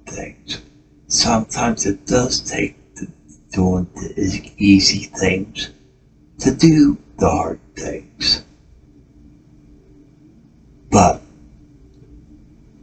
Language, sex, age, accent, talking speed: English, male, 60-79, American, 75 wpm